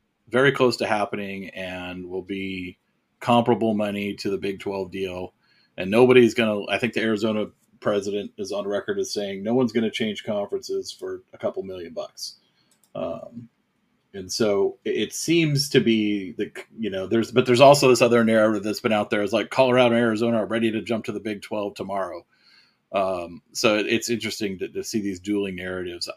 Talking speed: 195 wpm